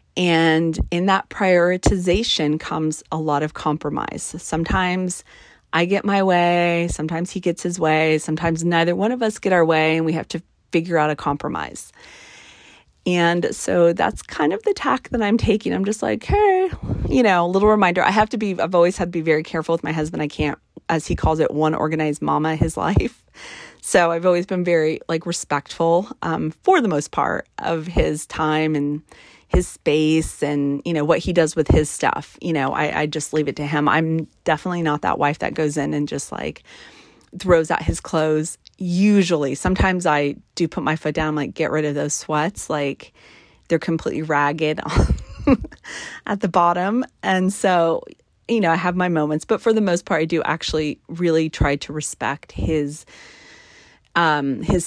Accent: American